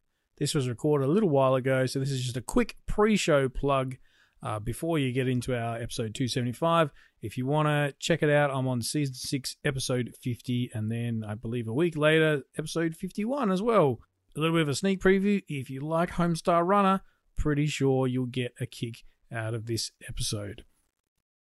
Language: English